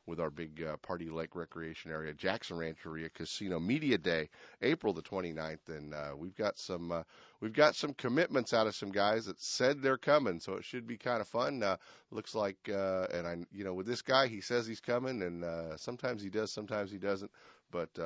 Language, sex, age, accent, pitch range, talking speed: English, male, 40-59, American, 80-100 Hz, 215 wpm